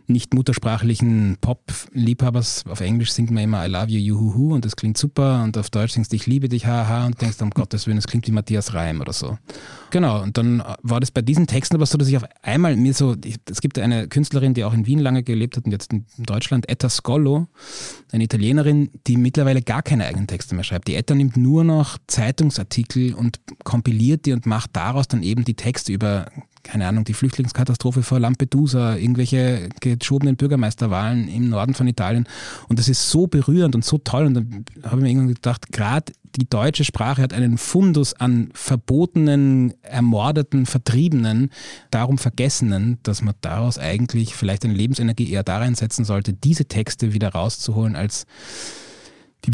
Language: German